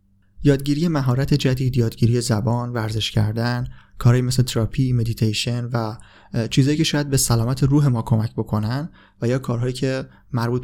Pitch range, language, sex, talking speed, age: 110-140 Hz, Persian, male, 145 wpm, 30-49